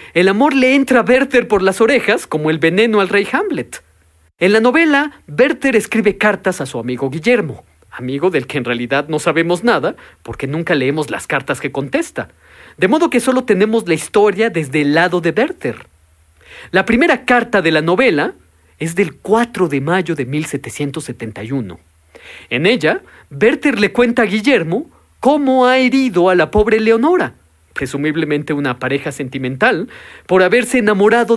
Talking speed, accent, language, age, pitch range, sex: 165 wpm, Mexican, Spanish, 40-59, 140-230 Hz, male